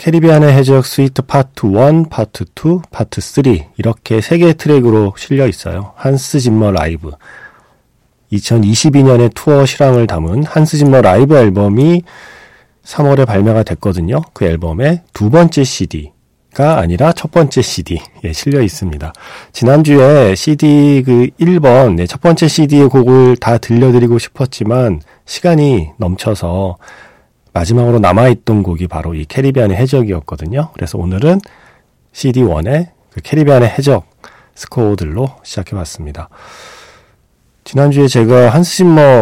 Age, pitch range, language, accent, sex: 40-59, 95-140 Hz, Korean, native, male